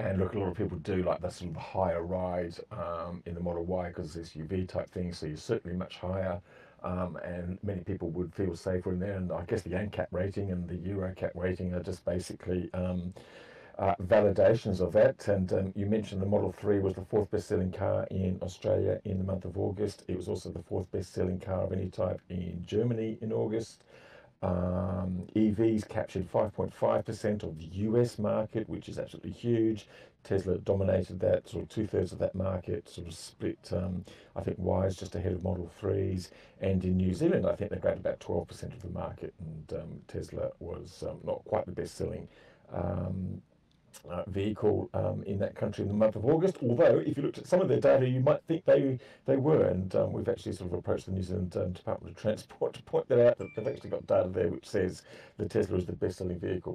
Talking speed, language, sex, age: 215 wpm, English, male, 50-69